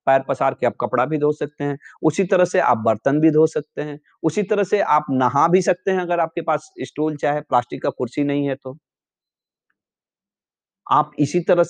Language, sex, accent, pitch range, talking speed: Hindi, male, native, 130-170 Hz, 205 wpm